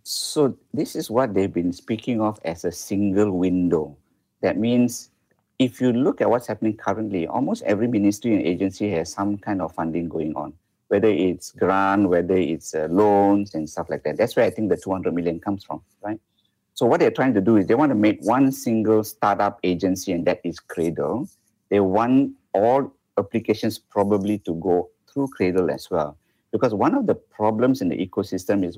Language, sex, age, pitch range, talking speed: English, male, 50-69, 95-110 Hz, 190 wpm